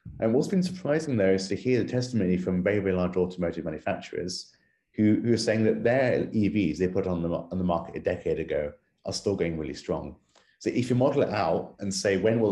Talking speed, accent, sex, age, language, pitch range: 230 wpm, British, male, 30-49, English, 90-110 Hz